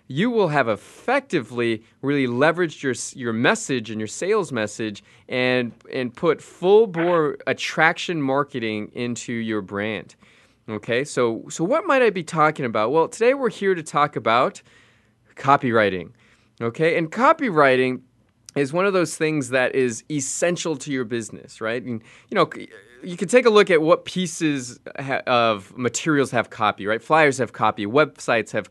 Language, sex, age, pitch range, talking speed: English, male, 20-39, 115-165 Hz, 160 wpm